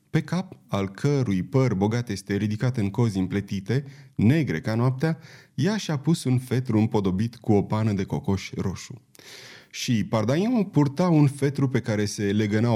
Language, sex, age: Romanian, male, 30-49